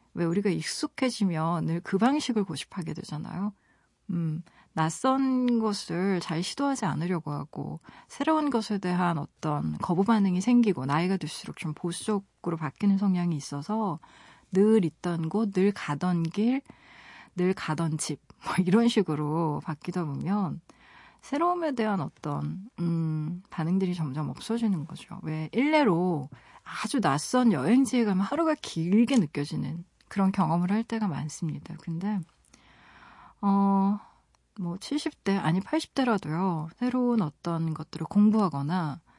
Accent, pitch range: native, 160-220 Hz